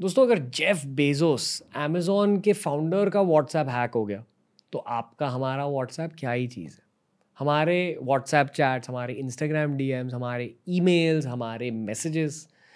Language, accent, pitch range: Hindi, native, 130-165 Hz